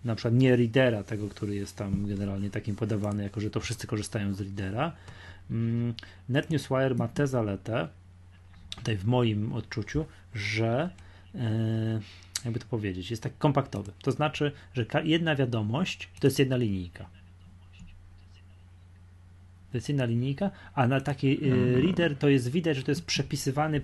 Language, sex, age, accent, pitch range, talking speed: Polish, male, 30-49, native, 100-140 Hz, 145 wpm